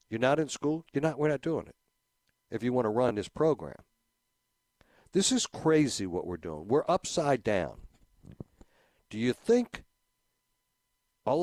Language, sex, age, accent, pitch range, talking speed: English, male, 60-79, American, 110-145 Hz, 145 wpm